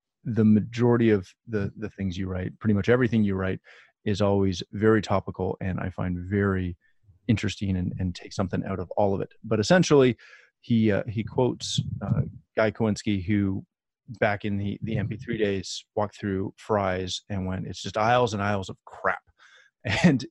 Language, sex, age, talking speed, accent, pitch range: English, male, 30-49, 175 wpm, American, 100-120 Hz